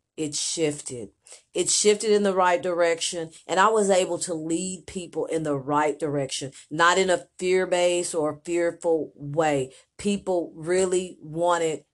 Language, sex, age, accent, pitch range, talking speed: English, female, 40-59, American, 170-210 Hz, 145 wpm